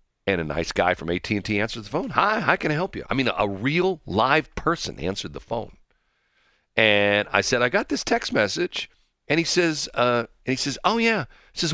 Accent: American